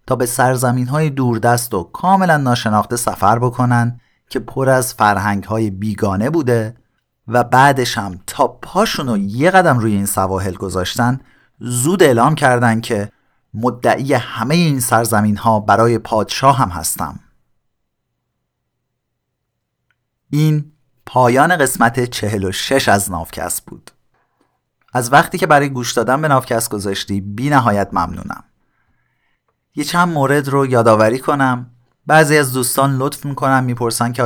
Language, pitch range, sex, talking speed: Persian, 105-130 Hz, male, 130 wpm